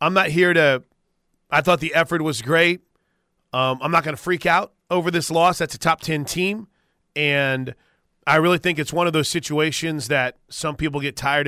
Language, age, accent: English, 30-49, American